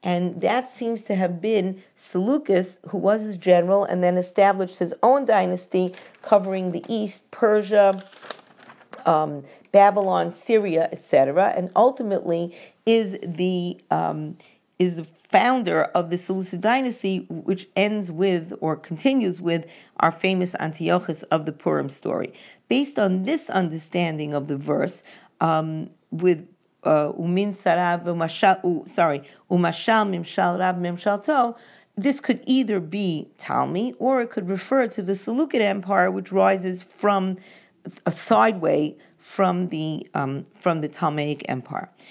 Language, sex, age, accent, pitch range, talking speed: English, female, 50-69, American, 170-210 Hz, 125 wpm